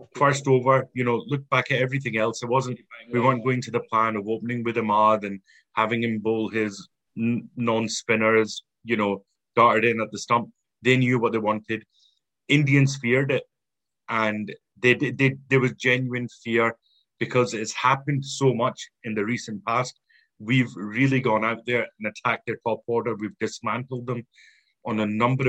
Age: 30-49